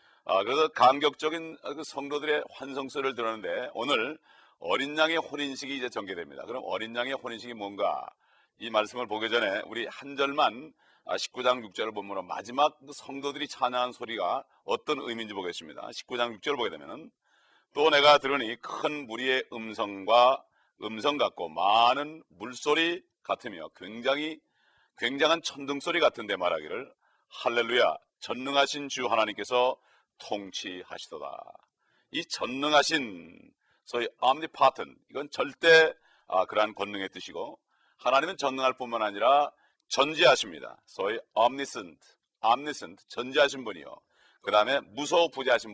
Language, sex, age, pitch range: Korean, male, 40-59, 115-150 Hz